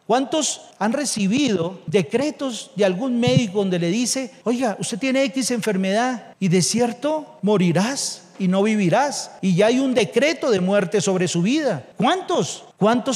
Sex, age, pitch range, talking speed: male, 40-59, 210-275 Hz, 155 wpm